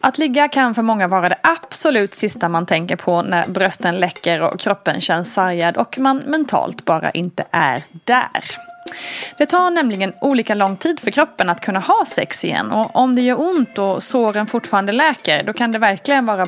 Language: Swedish